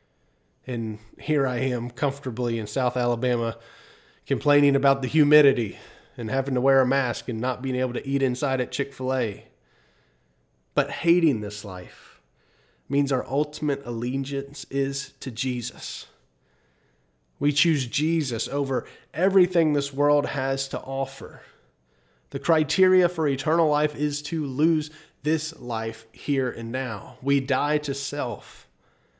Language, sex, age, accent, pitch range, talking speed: English, male, 30-49, American, 125-150 Hz, 135 wpm